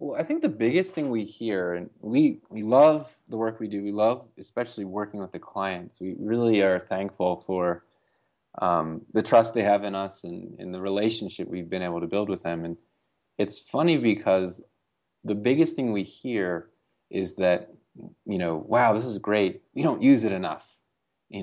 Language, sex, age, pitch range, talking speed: English, male, 20-39, 90-115 Hz, 195 wpm